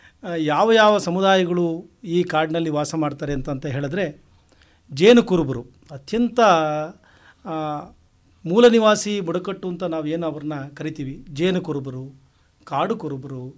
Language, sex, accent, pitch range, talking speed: Hindi, male, native, 150-190 Hz, 55 wpm